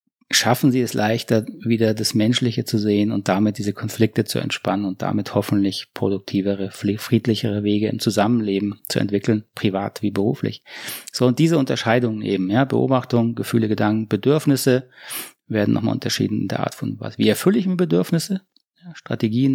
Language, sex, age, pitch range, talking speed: German, male, 30-49, 105-130 Hz, 160 wpm